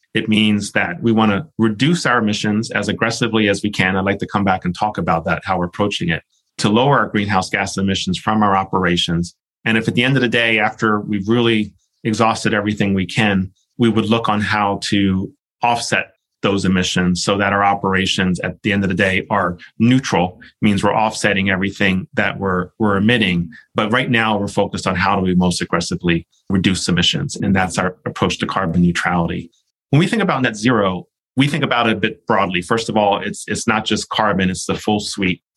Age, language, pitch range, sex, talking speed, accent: 30-49, English, 95-115 Hz, male, 210 wpm, American